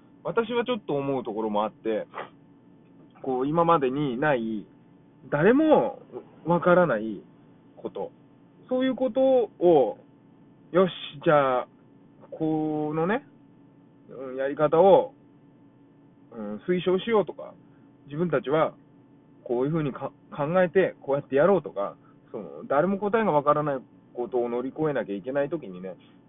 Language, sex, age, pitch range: Japanese, male, 20-39, 135-180 Hz